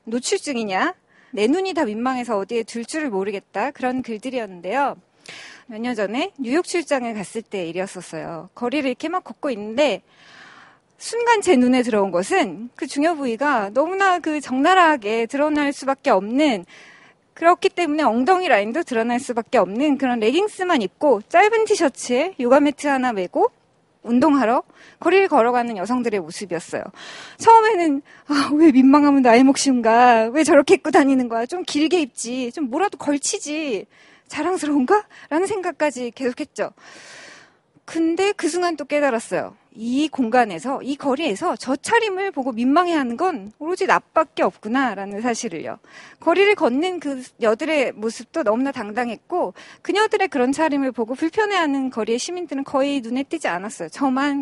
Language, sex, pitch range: Korean, female, 235-330 Hz